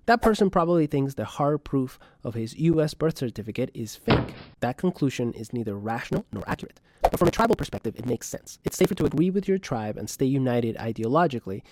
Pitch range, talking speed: 120-170 Hz, 205 wpm